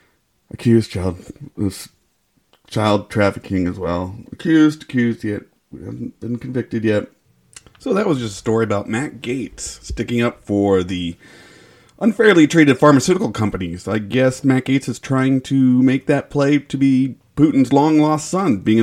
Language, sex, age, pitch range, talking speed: English, male, 30-49, 115-160 Hz, 155 wpm